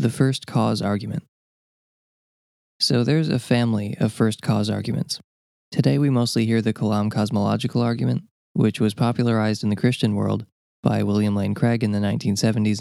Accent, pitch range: American, 105-120 Hz